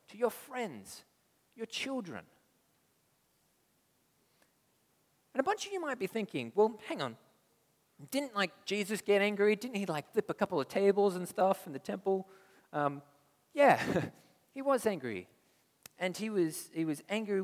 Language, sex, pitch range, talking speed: English, male, 120-200 Hz, 155 wpm